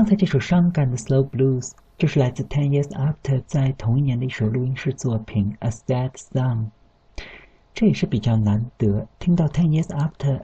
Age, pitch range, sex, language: 50-69, 110-140 Hz, male, Chinese